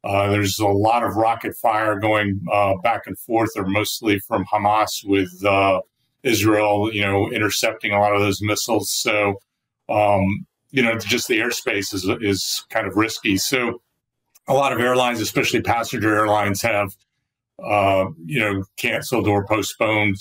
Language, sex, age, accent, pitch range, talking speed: English, male, 40-59, American, 100-120 Hz, 165 wpm